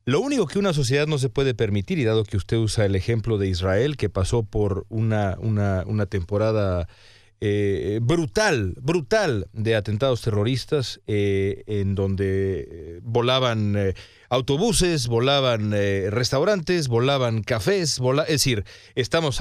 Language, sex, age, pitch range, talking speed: English, male, 40-59, 105-145 Hz, 135 wpm